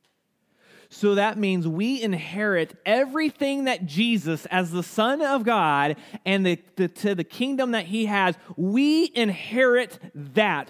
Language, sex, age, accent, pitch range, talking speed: English, male, 30-49, American, 190-255 Hz, 140 wpm